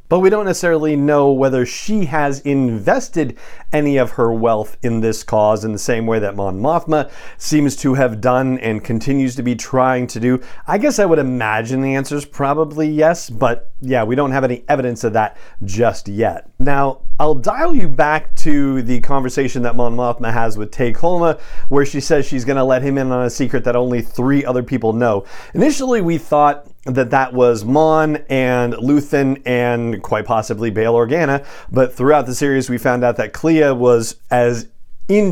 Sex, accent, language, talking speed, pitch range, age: male, American, English, 190 wpm, 115-150 Hz, 40-59